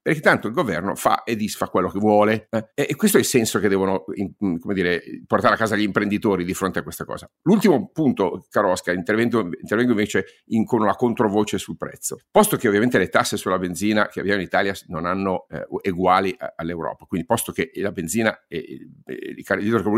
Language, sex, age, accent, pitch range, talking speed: Italian, male, 50-69, native, 95-135 Hz, 190 wpm